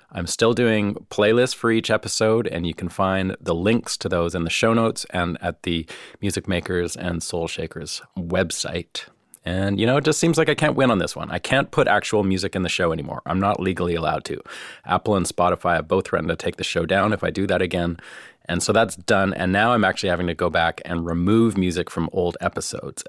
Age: 30-49